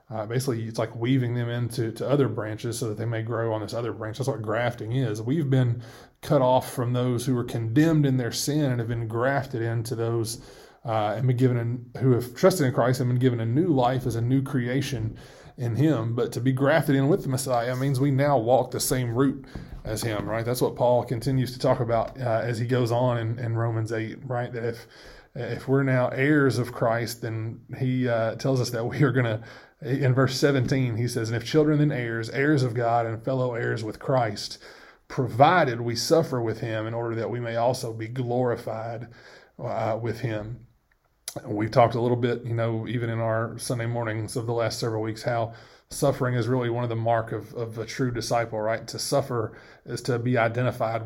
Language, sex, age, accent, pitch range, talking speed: English, male, 20-39, American, 115-130 Hz, 220 wpm